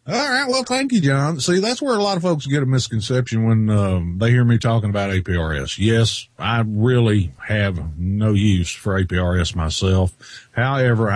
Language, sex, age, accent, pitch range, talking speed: English, male, 50-69, American, 95-115 Hz, 185 wpm